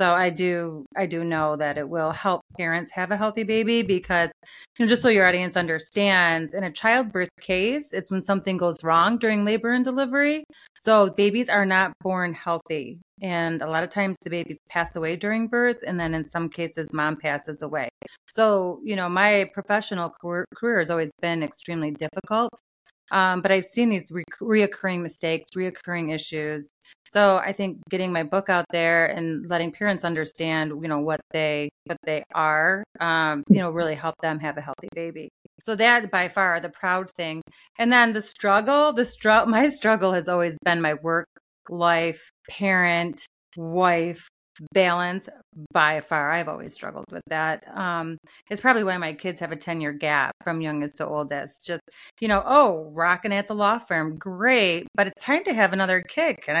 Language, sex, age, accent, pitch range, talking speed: English, female, 30-49, American, 165-205 Hz, 185 wpm